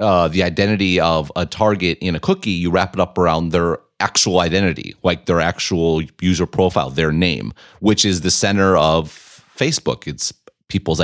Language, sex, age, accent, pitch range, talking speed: English, male, 30-49, American, 80-95 Hz, 175 wpm